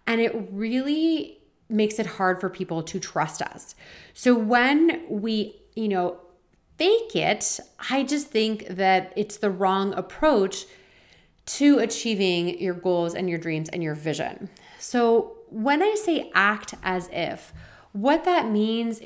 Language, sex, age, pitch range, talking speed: English, female, 30-49, 185-250 Hz, 145 wpm